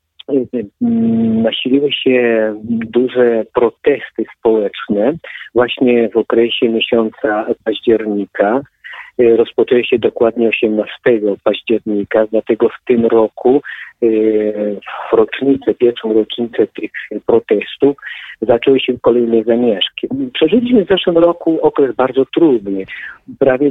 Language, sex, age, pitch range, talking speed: Polish, male, 50-69, 115-150 Hz, 95 wpm